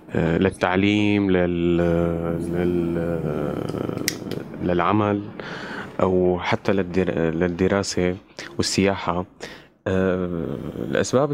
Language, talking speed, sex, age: Arabic, 60 wpm, male, 20-39